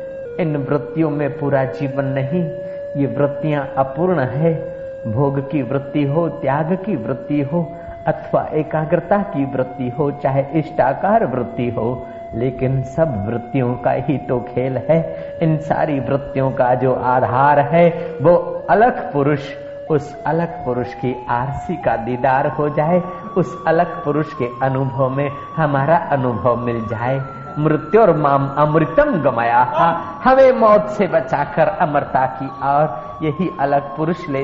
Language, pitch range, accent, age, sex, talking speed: Hindi, 140-185 Hz, native, 50-69, male, 135 wpm